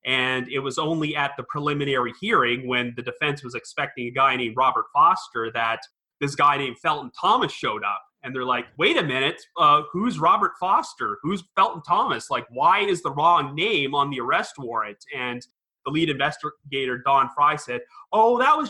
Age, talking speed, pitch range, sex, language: 30-49, 190 wpm, 130-175 Hz, male, English